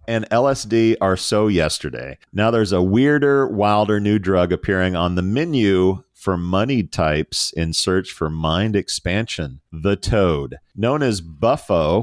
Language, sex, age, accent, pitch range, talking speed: English, male, 40-59, American, 90-115 Hz, 145 wpm